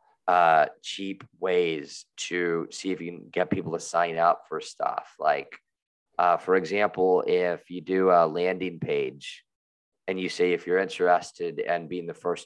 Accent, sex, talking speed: American, male, 170 wpm